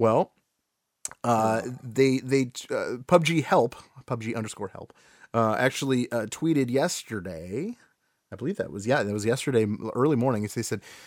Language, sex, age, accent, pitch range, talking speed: English, male, 30-49, American, 120-155 Hz, 145 wpm